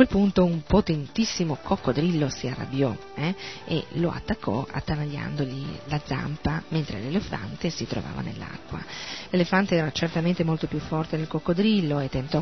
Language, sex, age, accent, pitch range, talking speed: Italian, female, 40-59, native, 150-195 Hz, 145 wpm